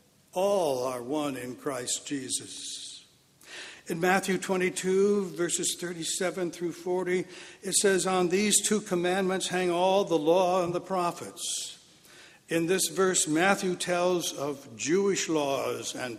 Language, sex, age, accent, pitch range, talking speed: English, male, 60-79, American, 155-185 Hz, 130 wpm